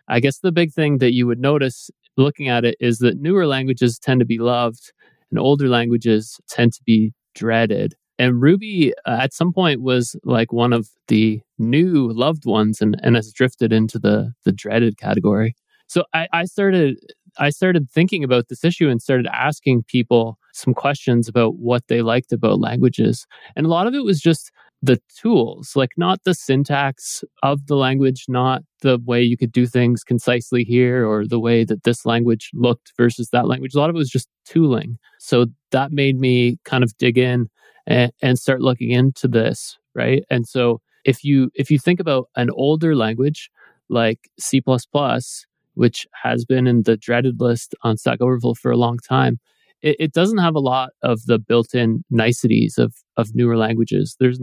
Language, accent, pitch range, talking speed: English, American, 120-140 Hz, 190 wpm